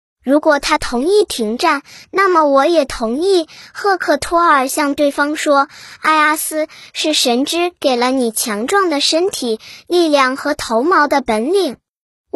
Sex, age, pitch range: male, 10-29, 260-330 Hz